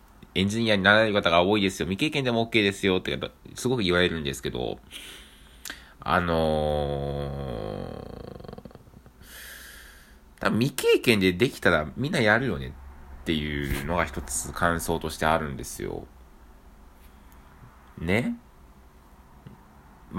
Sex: male